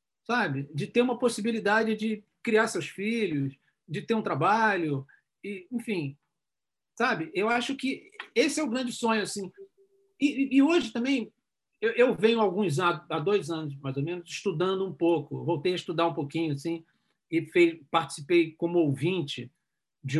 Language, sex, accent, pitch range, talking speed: Portuguese, male, Brazilian, 160-215 Hz, 160 wpm